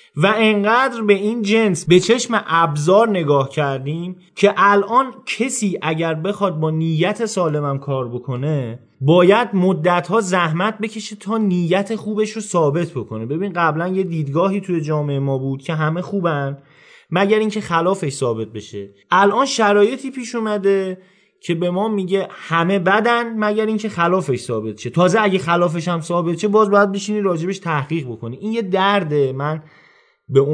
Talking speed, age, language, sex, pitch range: 155 wpm, 30-49, Persian, male, 150-205 Hz